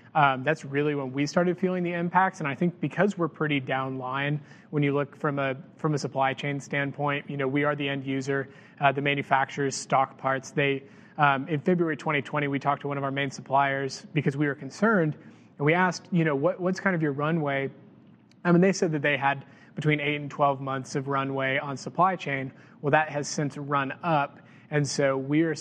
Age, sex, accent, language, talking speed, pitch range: 30-49, male, American, English, 220 wpm, 135-160 Hz